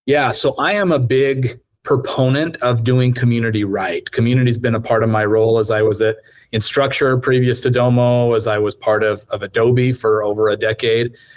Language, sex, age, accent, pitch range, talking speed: English, male, 30-49, American, 115-135 Hz, 200 wpm